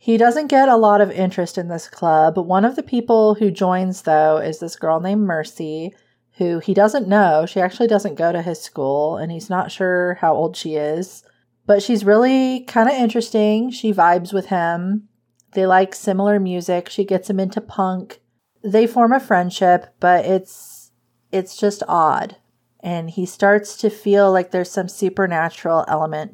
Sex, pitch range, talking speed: female, 160-195 Hz, 180 wpm